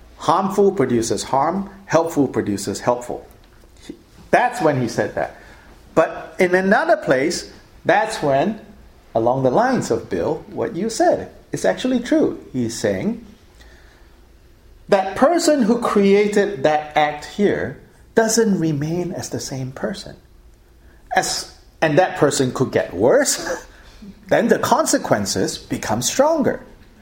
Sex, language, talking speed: male, English, 120 wpm